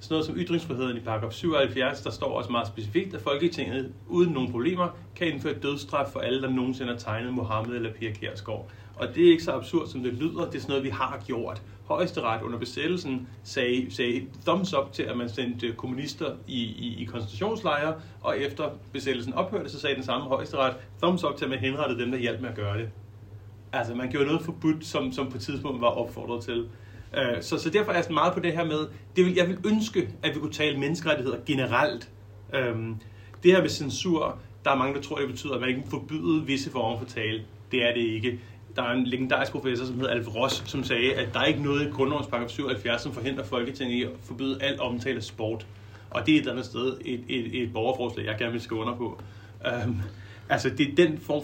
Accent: native